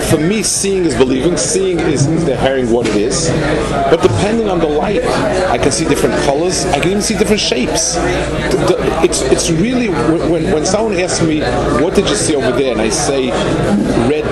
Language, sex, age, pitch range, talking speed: English, male, 40-59, 140-180 Hz, 190 wpm